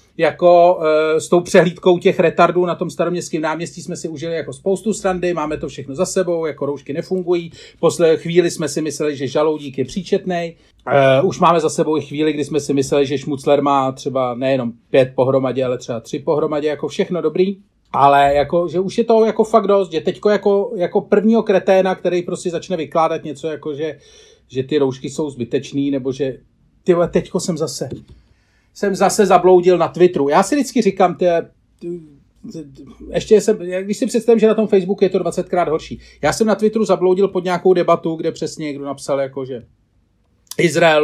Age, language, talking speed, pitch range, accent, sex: 40-59, Czech, 190 wpm, 135-180 Hz, native, male